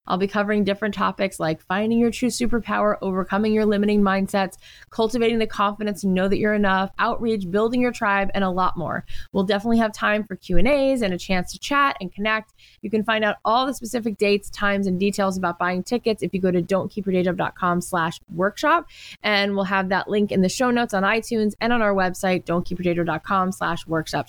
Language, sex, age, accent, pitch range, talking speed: English, female, 20-39, American, 190-235 Hz, 200 wpm